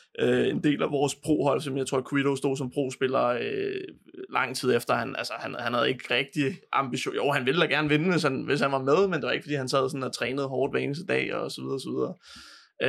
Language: Danish